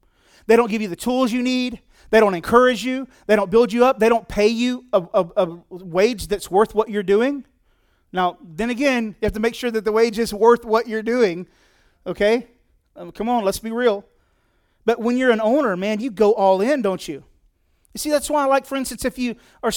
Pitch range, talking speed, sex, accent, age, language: 205-265 Hz, 230 wpm, male, American, 30-49, English